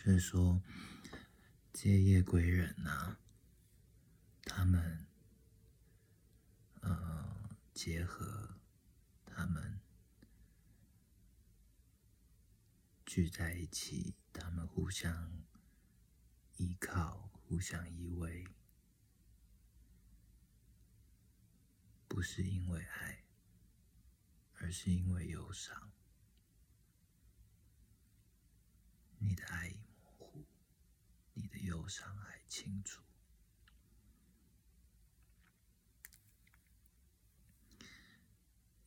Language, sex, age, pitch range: Chinese, male, 50-69, 85-100 Hz